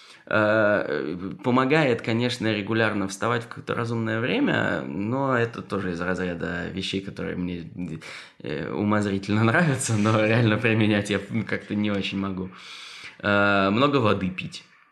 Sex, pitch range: male, 90-110 Hz